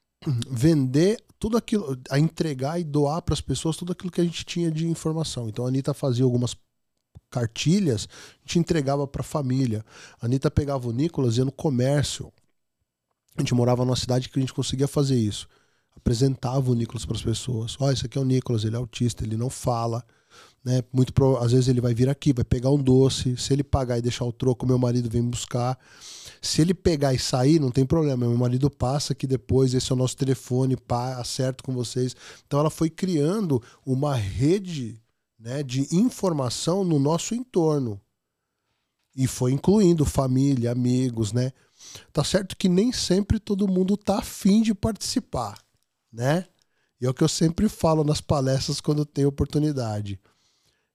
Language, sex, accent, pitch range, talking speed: Portuguese, male, Brazilian, 125-155 Hz, 185 wpm